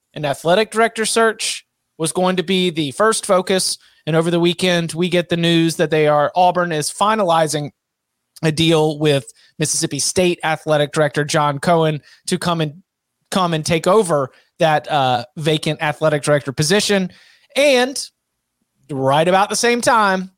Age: 30-49